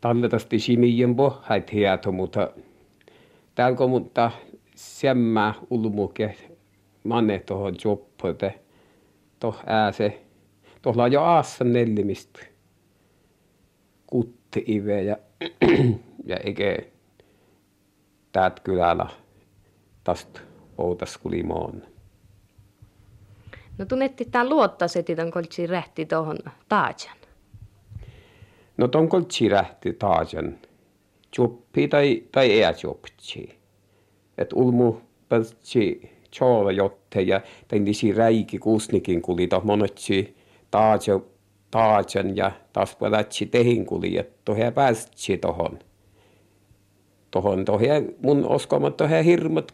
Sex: male